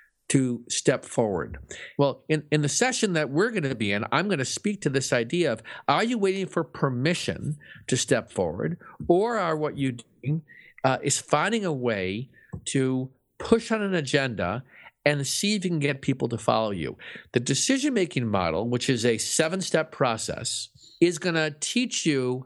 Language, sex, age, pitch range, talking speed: English, male, 50-69, 125-170 Hz, 180 wpm